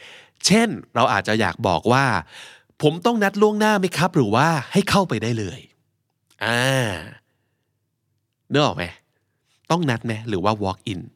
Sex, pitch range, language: male, 110-145 Hz, Thai